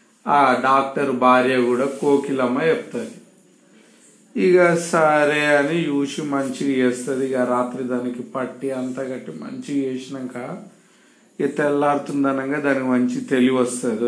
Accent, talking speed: native, 110 wpm